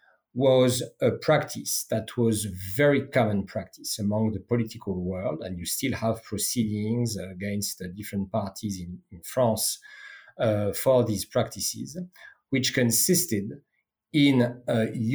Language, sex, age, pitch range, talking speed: English, male, 50-69, 105-135 Hz, 125 wpm